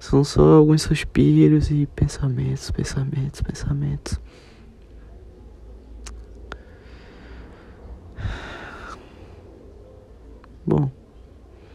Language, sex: Portuguese, male